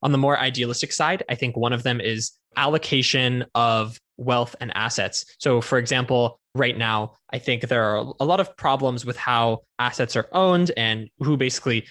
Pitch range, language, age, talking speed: 115-135 Hz, English, 10-29, 185 wpm